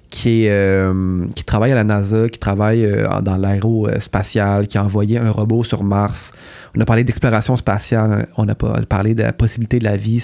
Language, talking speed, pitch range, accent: English, 200 wpm, 110-135 Hz, Canadian